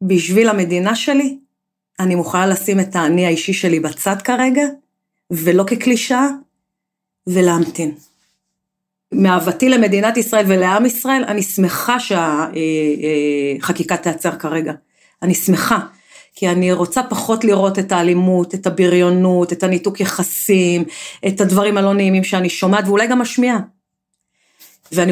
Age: 40-59